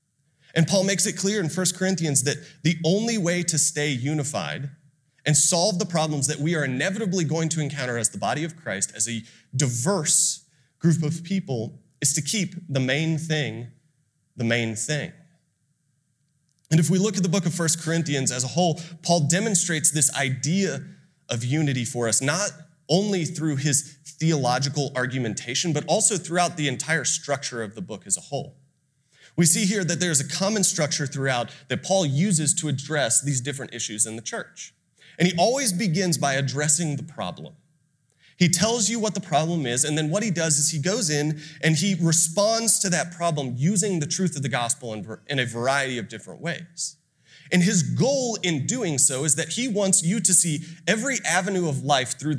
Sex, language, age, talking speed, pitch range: male, English, 30-49, 190 wpm, 140-175 Hz